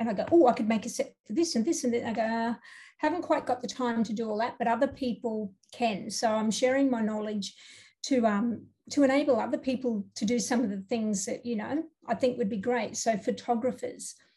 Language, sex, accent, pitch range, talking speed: English, female, Australian, 220-255 Hz, 245 wpm